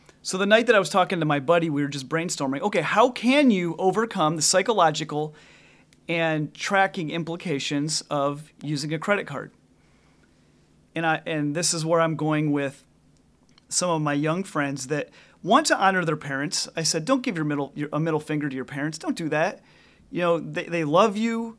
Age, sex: 30-49, male